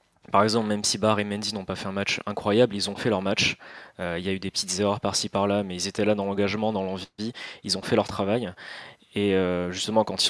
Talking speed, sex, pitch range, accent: 270 wpm, male, 100-110 Hz, French